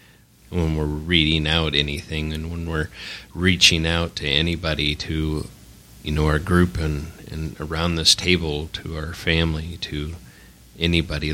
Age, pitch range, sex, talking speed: 30-49, 75-85 Hz, male, 145 wpm